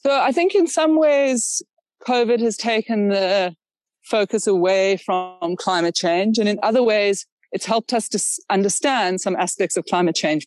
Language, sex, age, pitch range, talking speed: English, female, 30-49, 185-260 Hz, 165 wpm